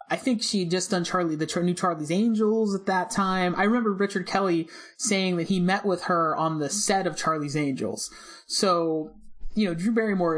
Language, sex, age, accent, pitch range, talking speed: English, male, 30-49, American, 160-215 Hz, 200 wpm